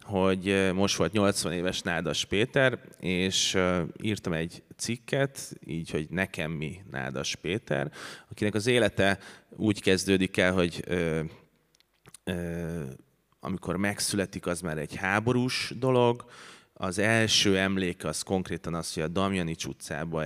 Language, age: Hungarian, 30-49